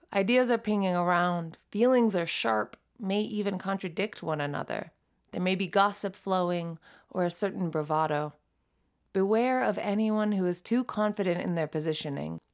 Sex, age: female, 30-49